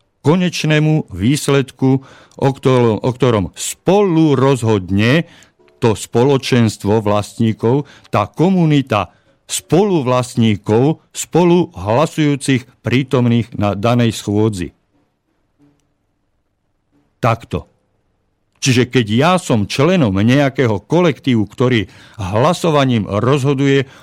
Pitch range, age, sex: 105-150 Hz, 50-69, male